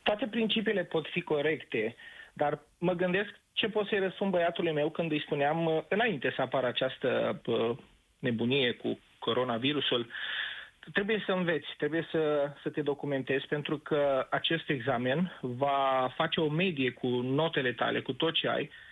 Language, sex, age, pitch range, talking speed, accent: Romanian, male, 30-49, 145-190 Hz, 150 wpm, native